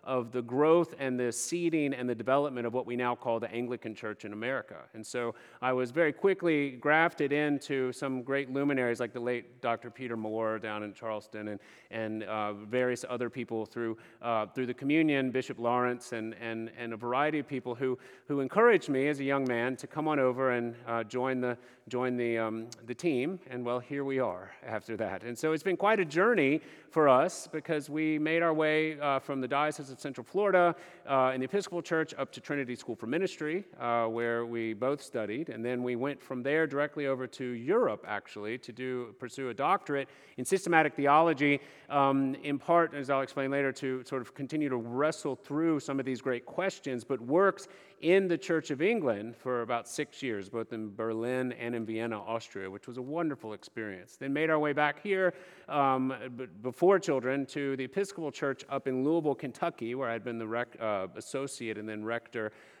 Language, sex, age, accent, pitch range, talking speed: English, male, 40-59, American, 120-150 Hz, 200 wpm